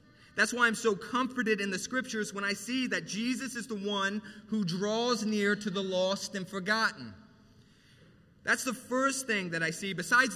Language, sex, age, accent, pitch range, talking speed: English, male, 30-49, American, 205-245 Hz, 185 wpm